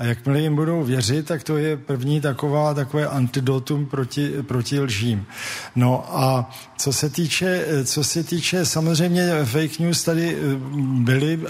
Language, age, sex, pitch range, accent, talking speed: Czech, 50-69, male, 130-145 Hz, native, 130 wpm